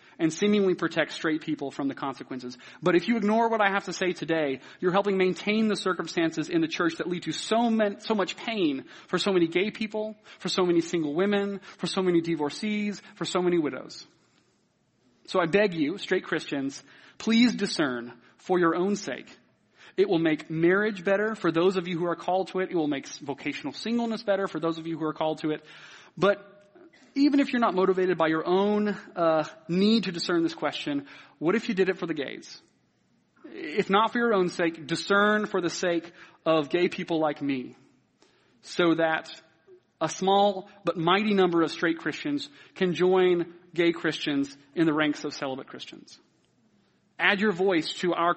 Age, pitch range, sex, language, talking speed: 30-49, 160-205 Hz, male, English, 190 wpm